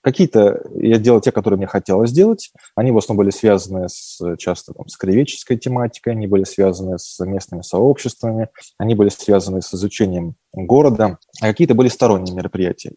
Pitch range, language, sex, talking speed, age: 105-130 Hz, Russian, male, 160 wpm, 20-39